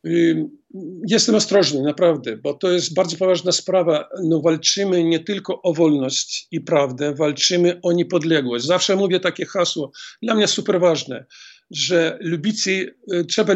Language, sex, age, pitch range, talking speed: Polish, male, 50-69, 170-200 Hz, 135 wpm